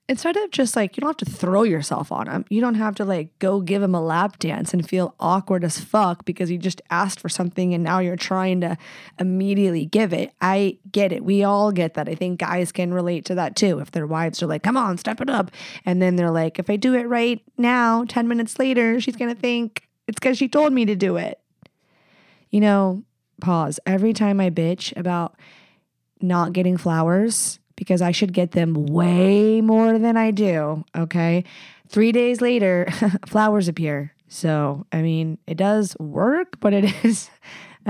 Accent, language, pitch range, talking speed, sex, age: American, English, 175-210 Hz, 205 wpm, female, 20-39